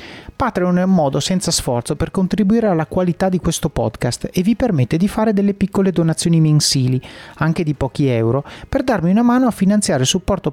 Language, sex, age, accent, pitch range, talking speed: Italian, male, 30-49, native, 140-195 Hz, 195 wpm